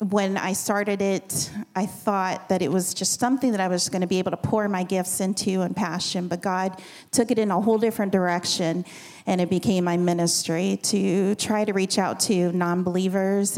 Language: English